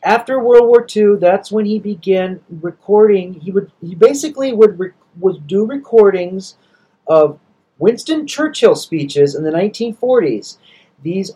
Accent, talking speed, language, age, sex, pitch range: American, 130 wpm, English, 40-59, male, 175-220 Hz